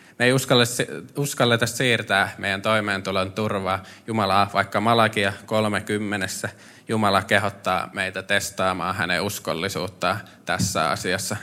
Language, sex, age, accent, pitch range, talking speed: Finnish, male, 20-39, native, 95-110 Hz, 100 wpm